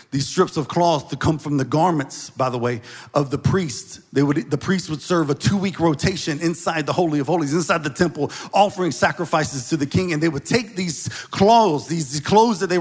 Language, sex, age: English, male, 40-59